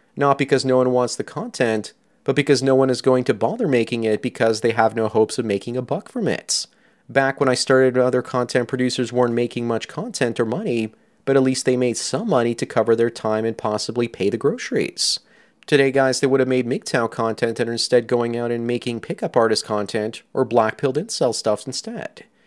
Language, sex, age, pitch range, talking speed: English, male, 30-49, 115-135 Hz, 215 wpm